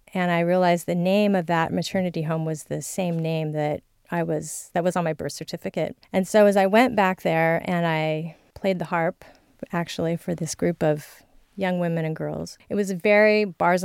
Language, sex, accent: English, female, American